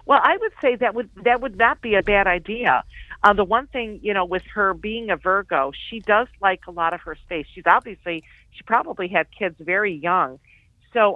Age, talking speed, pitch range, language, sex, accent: 50-69, 220 wpm, 175-220 Hz, English, female, American